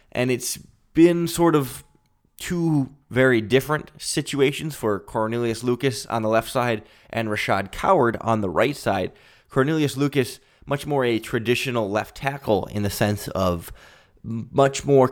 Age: 20-39